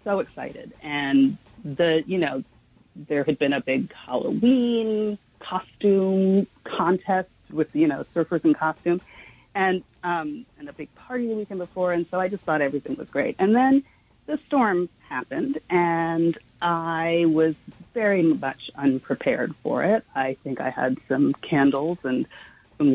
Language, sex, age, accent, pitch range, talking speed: English, female, 40-59, American, 150-195 Hz, 150 wpm